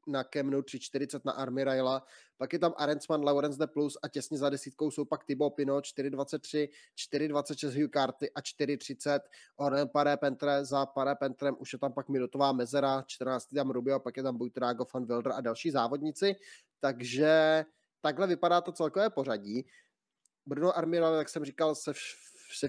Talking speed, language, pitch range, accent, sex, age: 160 wpm, Czech, 135-150 Hz, native, male, 20-39